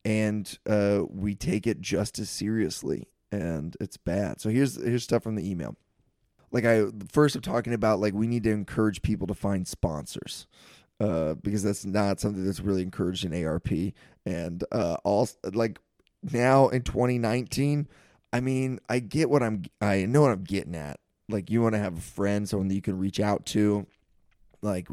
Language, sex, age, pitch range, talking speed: English, male, 20-39, 100-125 Hz, 185 wpm